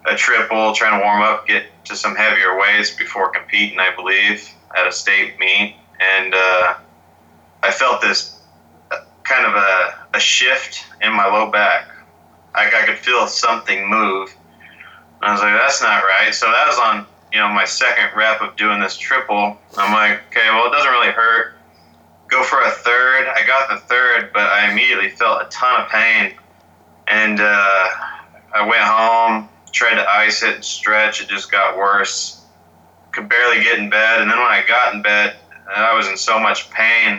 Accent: American